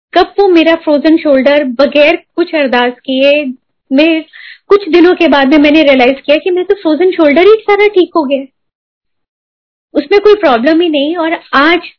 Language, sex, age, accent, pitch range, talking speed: Hindi, female, 20-39, native, 285-360 Hz, 75 wpm